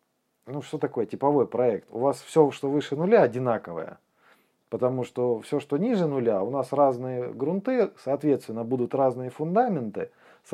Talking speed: 155 wpm